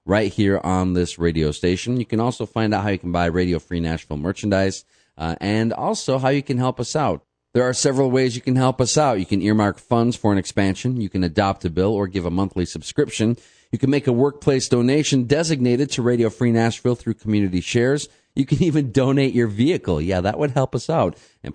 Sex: male